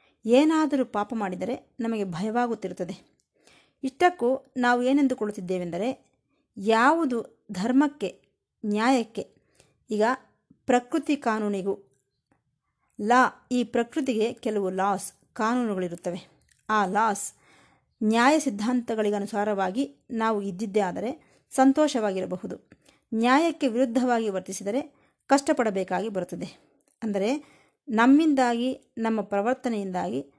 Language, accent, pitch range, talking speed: Kannada, native, 195-260 Hz, 75 wpm